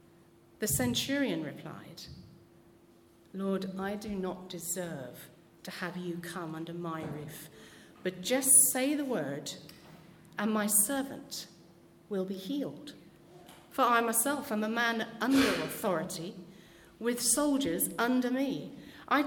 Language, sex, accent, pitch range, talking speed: English, female, British, 180-225 Hz, 120 wpm